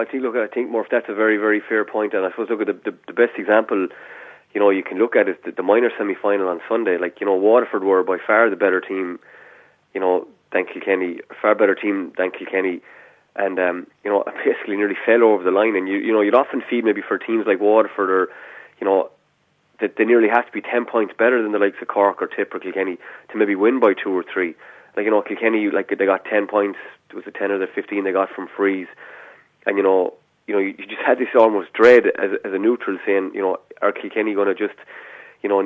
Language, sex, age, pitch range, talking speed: English, male, 20-39, 95-110 Hz, 255 wpm